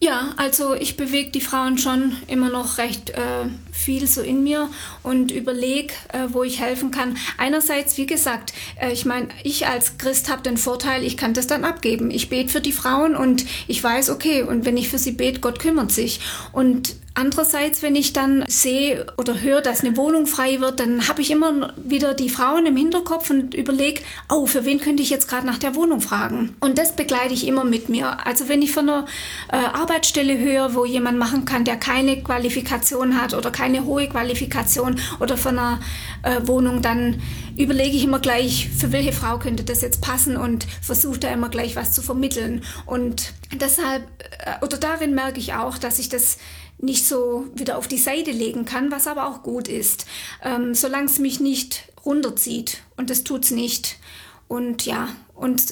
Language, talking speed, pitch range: German, 195 wpm, 245-280 Hz